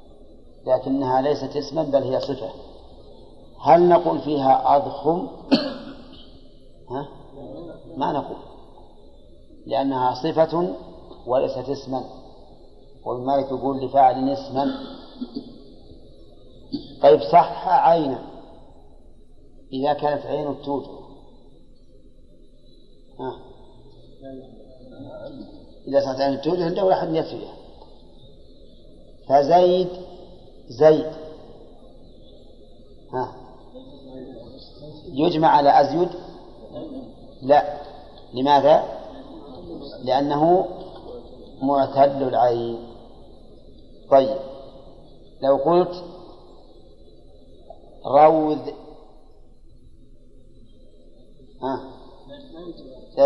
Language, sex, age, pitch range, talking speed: Arabic, male, 40-59, 130-160 Hz, 60 wpm